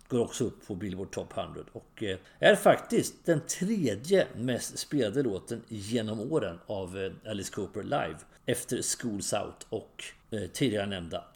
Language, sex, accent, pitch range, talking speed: English, male, Swedish, 95-145 Hz, 145 wpm